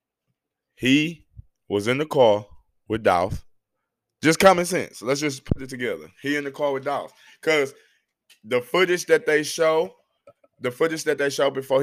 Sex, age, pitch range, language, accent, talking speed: male, 20-39, 110-150 Hz, English, American, 165 wpm